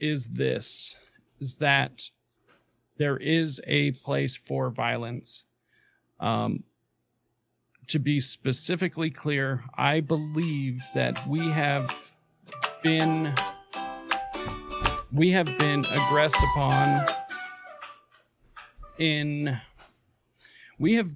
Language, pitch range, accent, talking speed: English, 120-150 Hz, American, 80 wpm